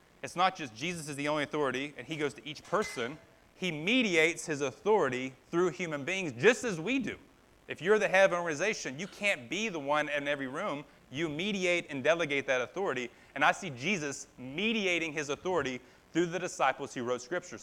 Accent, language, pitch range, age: American, English, 140-175 Hz, 30-49